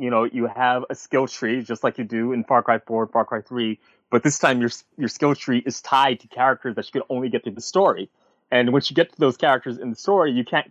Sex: male